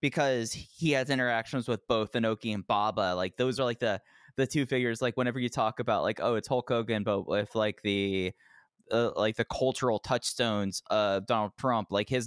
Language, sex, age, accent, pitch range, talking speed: English, male, 20-39, American, 100-125 Hz, 200 wpm